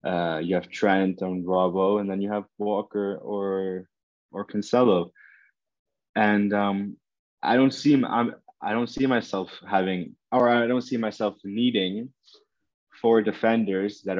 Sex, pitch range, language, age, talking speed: male, 95-110 Hz, English, 20-39, 150 wpm